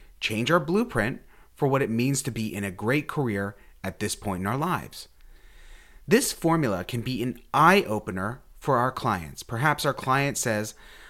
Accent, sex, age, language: American, male, 30-49, English